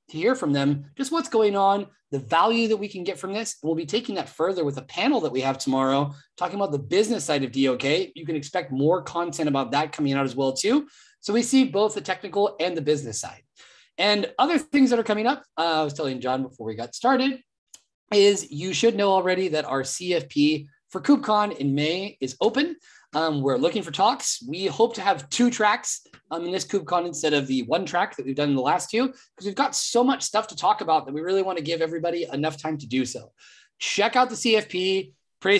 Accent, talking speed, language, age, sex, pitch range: American, 235 wpm, English, 30-49, male, 150-215 Hz